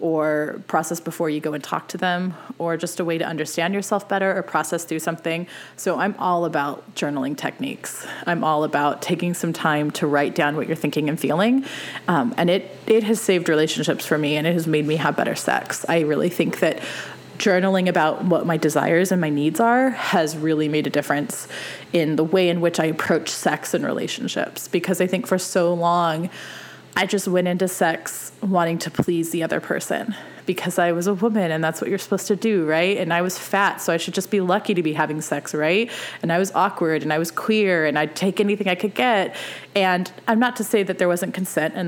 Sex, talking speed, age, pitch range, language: female, 225 wpm, 20-39, 160-195 Hz, English